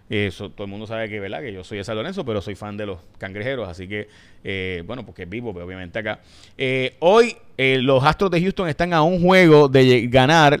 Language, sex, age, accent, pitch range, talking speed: Spanish, male, 30-49, Venezuelan, 105-140 Hz, 240 wpm